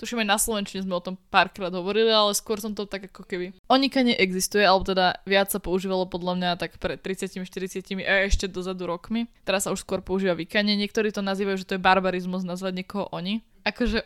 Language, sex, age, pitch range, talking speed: Slovak, female, 20-39, 190-225 Hz, 215 wpm